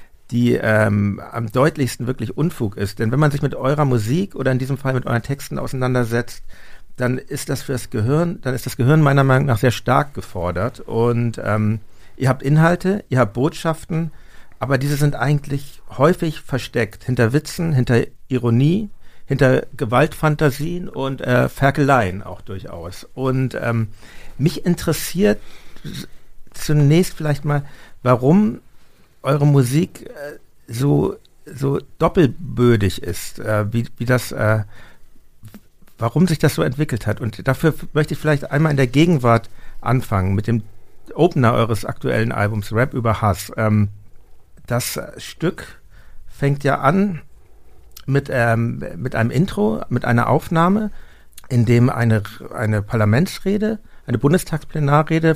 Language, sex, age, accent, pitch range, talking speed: German, male, 60-79, German, 115-150 Hz, 135 wpm